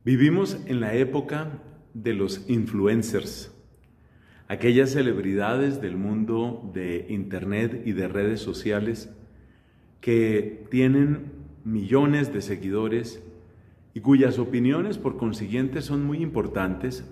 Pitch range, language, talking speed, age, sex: 105-140 Hz, Spanish, 105 wpm, 40-59, male